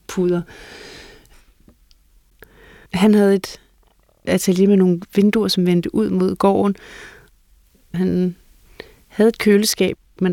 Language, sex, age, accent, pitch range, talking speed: Danish, female, 30-49, native, 170-200 Hz, 100 wpm